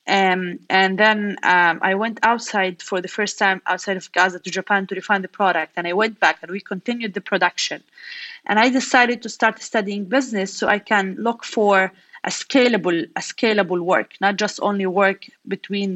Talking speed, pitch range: 190 wpm, 185-240 Hz